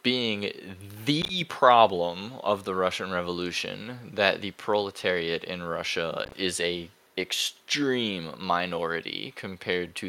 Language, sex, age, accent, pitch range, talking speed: English, male, 10-29, American, 90-120 Hz, 105 wpm